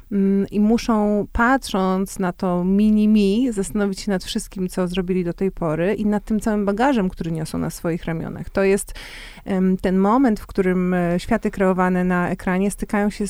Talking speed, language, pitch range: 165 wpm, Polish, 185-210 Hz